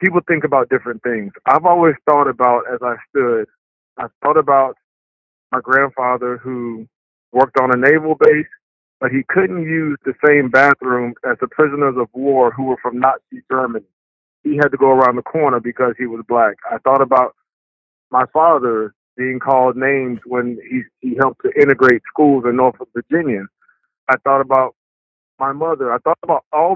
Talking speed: 175 wpm